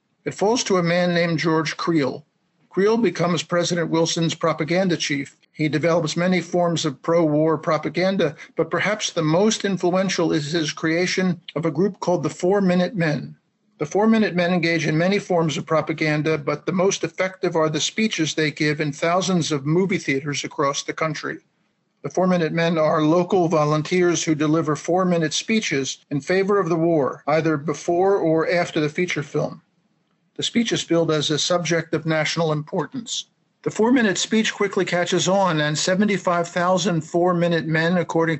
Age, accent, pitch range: 50-69, American, 155-180 Hz